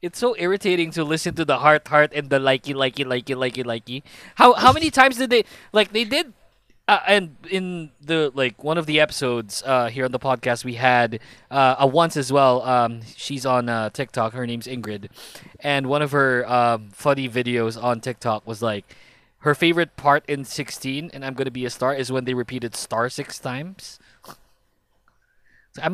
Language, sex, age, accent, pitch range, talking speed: English, male, 20-39, Filipino, 125-185 Hz, 195 wpm